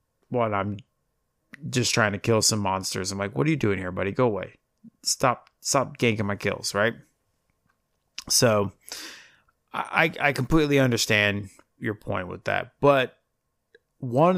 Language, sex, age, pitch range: English, male, 30-49, 100-125 Hz